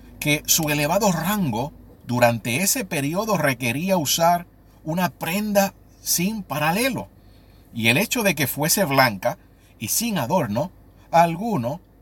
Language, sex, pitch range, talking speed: Spanish, male, 120-170 Hz, 120 wpm